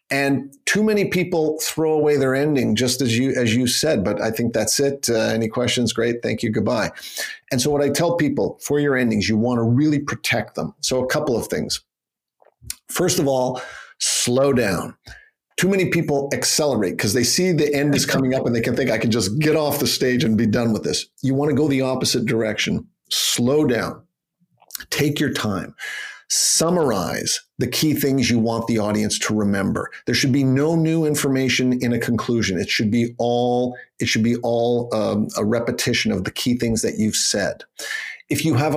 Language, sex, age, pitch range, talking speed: English, male, 50-69, 120-150 Hz, 205 wpm